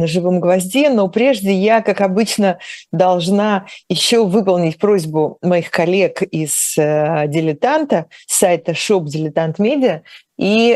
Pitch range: 160-205 Hz